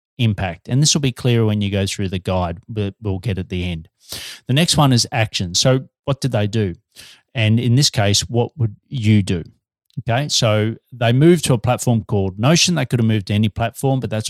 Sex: male